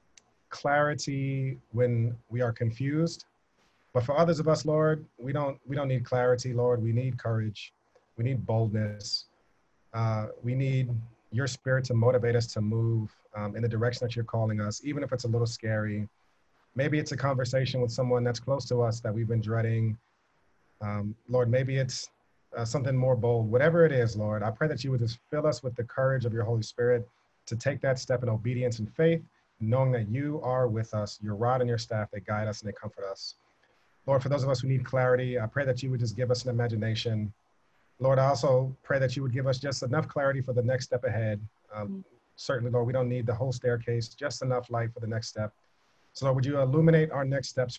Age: 40-59